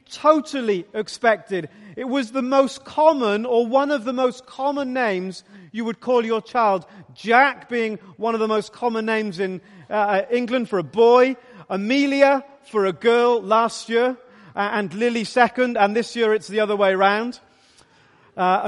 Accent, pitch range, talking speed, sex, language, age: British, 200-250 Hz, 165 wpm, male, English, 40-59